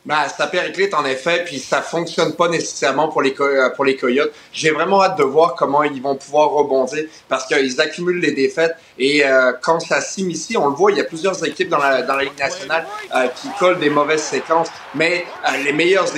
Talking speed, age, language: 235 wpm, 30-49, French